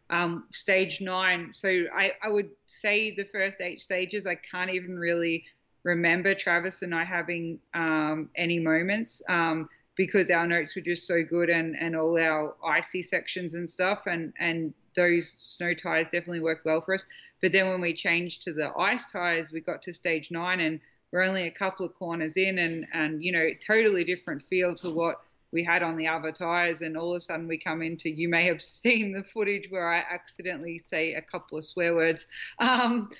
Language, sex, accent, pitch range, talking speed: English, female, Australian, 165-185 Hz, 200 wpm